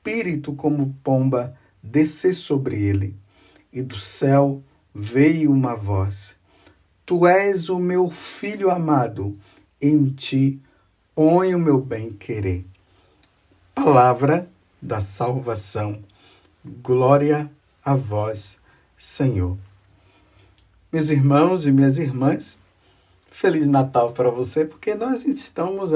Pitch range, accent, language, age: 100-155 Hz, Brazilian, Portuguese, 50-69